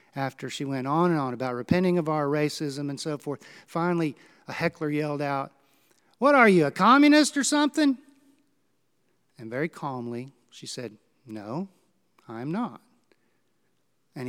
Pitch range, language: 130-170 Hz, English